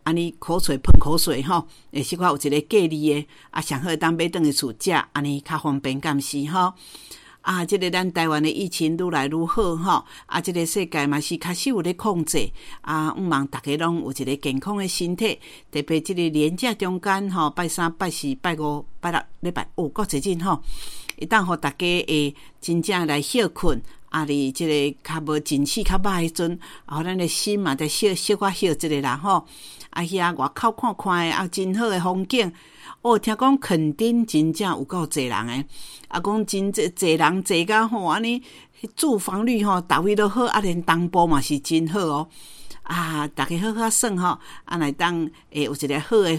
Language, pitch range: Chinese, 150-190 Hz